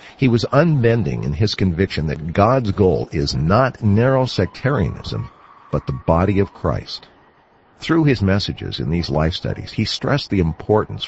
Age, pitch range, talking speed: 50-69, 90-120 Hz, 155 wpm